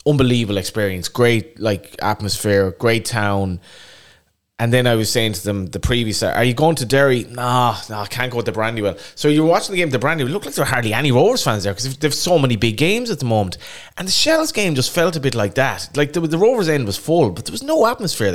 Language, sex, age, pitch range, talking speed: English, male, 20-39, 105-140 Hz, 250 wpm